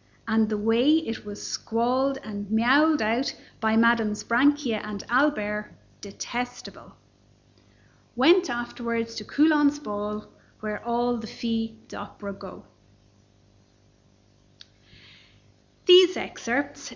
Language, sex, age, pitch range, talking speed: English, female, 30-49, 210-260 Hz, 100 wpm